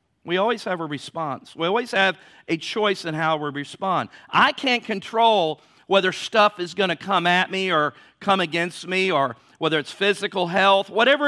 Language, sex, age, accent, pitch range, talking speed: English, male, 50-69, American, 180-235 Hz, 185 wpm